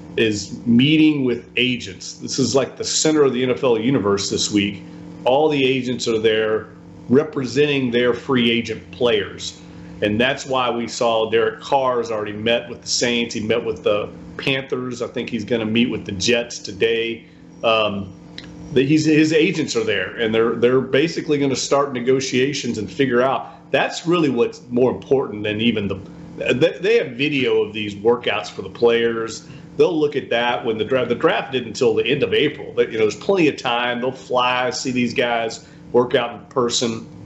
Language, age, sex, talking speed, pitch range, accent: English, 40-59, male, 190 wpm, 115-140 Hz, American